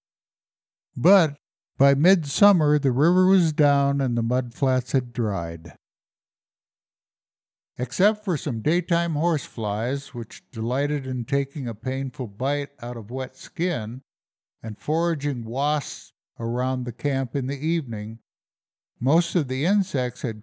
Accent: American